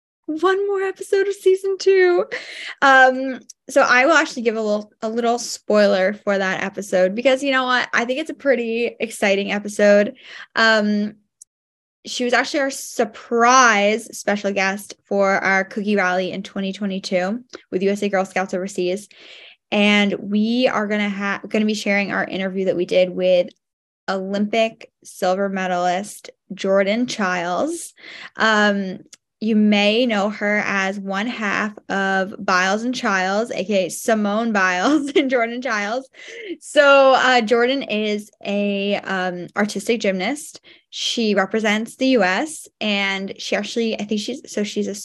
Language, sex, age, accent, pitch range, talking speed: English, female, 10-29, American, 195-250 Hz, 145 wpm